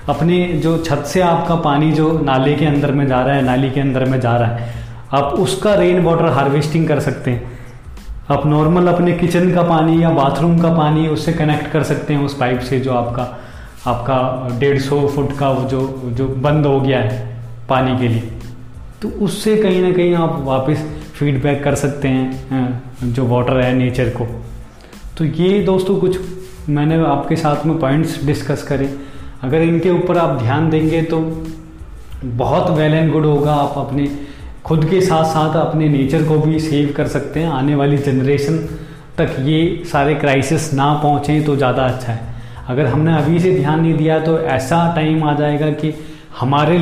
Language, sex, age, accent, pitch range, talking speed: Hindi, male, 20-39, native, 130-160 Hz, 185 wpm